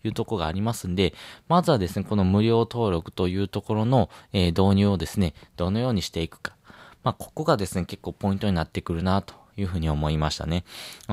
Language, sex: Japanese, male